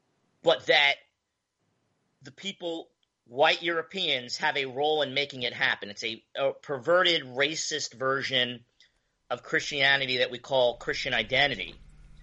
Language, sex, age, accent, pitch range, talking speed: English, male, 40-59, American, 140-180 Hz, 130 wpm